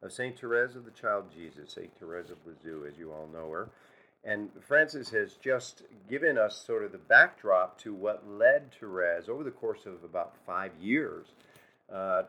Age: 50-69